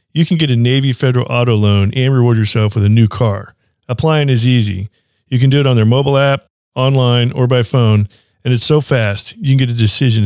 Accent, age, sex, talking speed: American, 40-59, male, 230 wpm